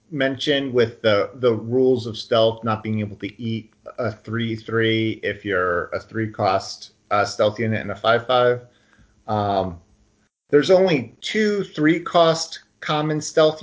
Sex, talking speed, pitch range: male, 155 wpm, 110-140 Hz